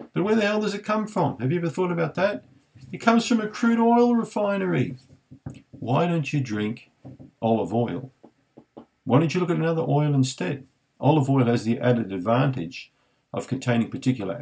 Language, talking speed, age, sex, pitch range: English, 185 wpm, 50-69, male, 100-135 Hz